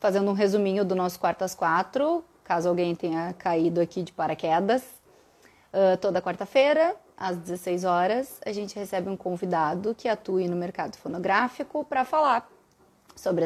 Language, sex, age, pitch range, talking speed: Portuguese, female, 20-39, 175-210 Hz, 145 wpm